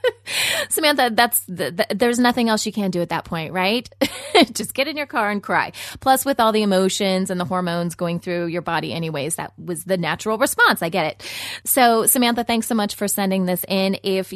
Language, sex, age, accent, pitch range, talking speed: English, female, 20-39, American, 185-255 Hz, 215 wpm